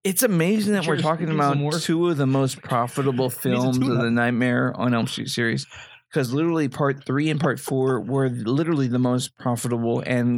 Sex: male